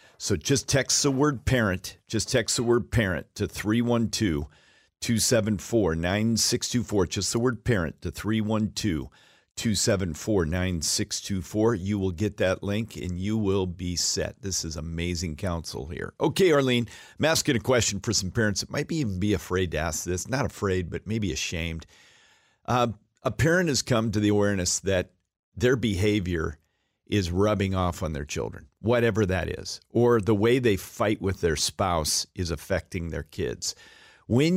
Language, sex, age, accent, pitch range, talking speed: English, male, 50-69, American, 85-115 Hz, 155 wpm